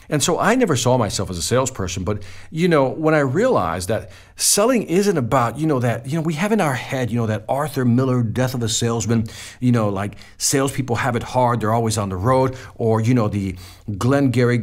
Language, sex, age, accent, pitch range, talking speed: English, male, 50-69, American, 105-140 Hz, 225 wpm